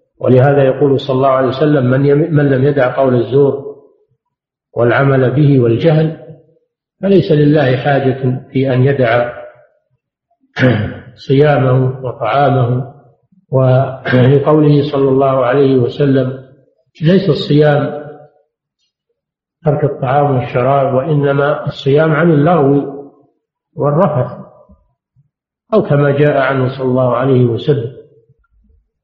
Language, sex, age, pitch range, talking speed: Arabic, male, 50-69, 130-155 Hz, 95 wpm